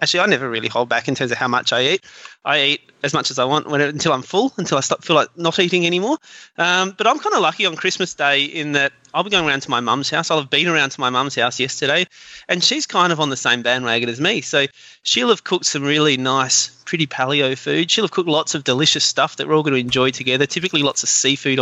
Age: 20-39